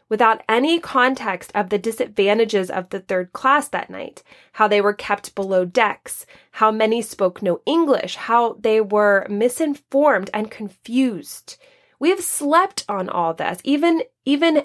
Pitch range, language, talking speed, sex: 200-275 Hz, English, 150 wpm, female